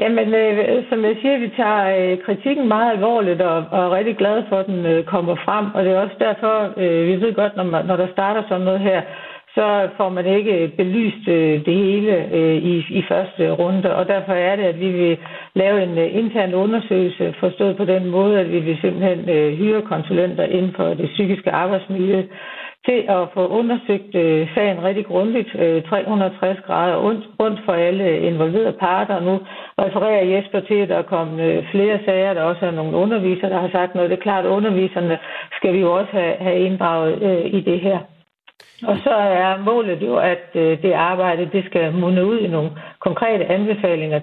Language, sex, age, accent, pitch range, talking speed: Danish, female, 60-79, native, 175-200 Hz, 175 wpm